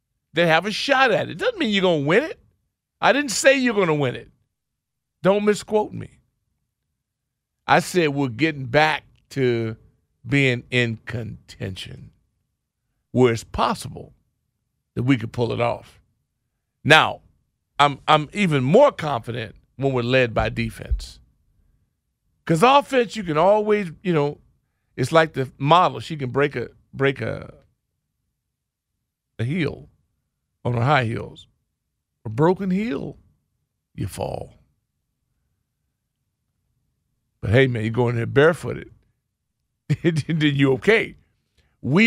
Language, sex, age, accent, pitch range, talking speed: English, male, 50-69, American, 115-160 Hz, 130 wpm